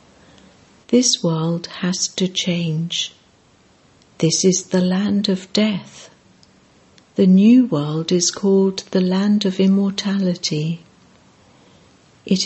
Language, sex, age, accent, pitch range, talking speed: English, female, 60-79, British, 165-195 Hz, 100 wpm